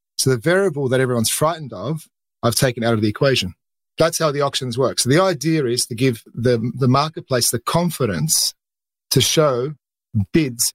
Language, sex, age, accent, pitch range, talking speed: English, male, 40-59, Australian, 125-150 Hz, 180 wpm